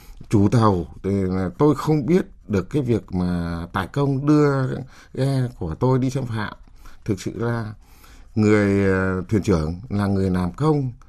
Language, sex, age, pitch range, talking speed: Vietnamese, male, 60-79, 90-130 Hz, 155 wpm